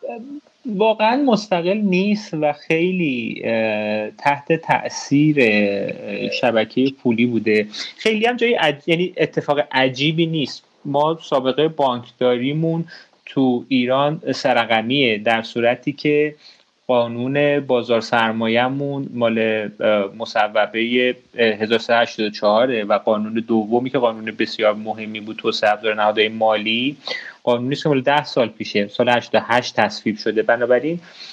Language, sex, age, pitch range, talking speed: Persian, male, 30-49, 110-150 Hz, 105 wpm